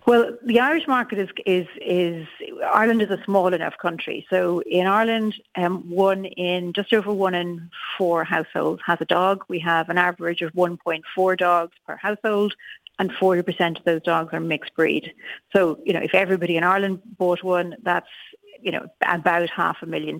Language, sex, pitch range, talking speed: English, female, 170-205 Hz, 180 wpm